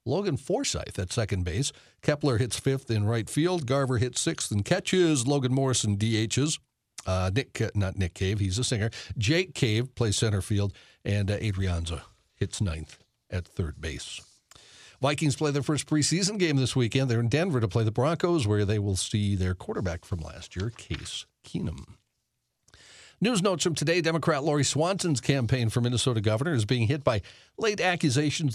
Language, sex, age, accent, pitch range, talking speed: English, male, 60-79, American, 110-150 Hz, 175 wpm